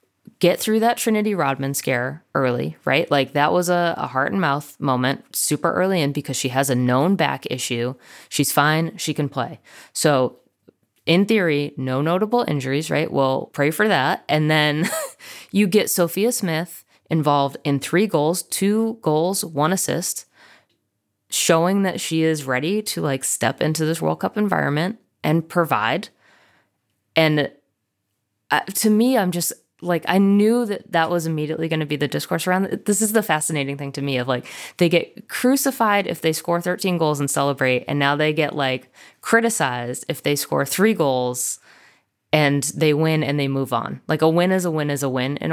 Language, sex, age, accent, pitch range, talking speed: English, female, 20-39, American, 135-180 Hz, 180 wpm